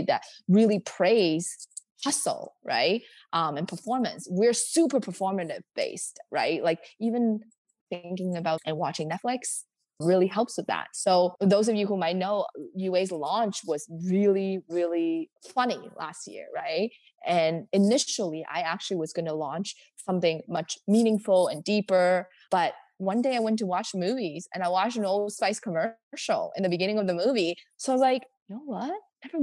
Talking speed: 165 wpm